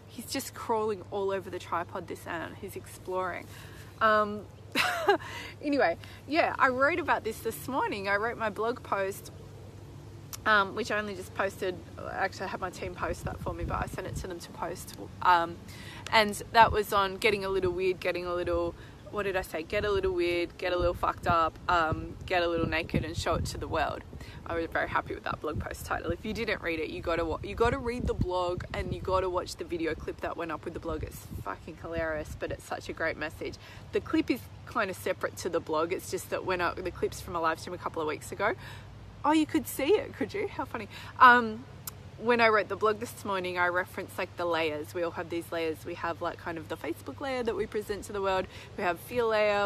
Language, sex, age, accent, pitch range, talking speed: English, female, 20-39, Australian, 165-215 Hz, 240 wpm